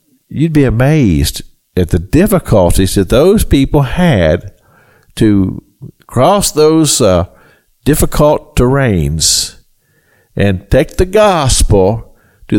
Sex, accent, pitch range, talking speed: male, American, 105-155 Hz, 100 wpm